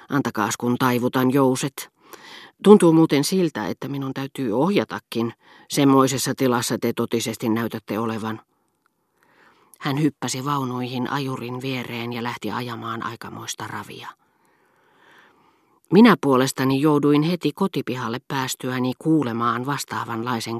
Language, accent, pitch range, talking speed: Finnish, native, 115-145 Hz, 100 wpm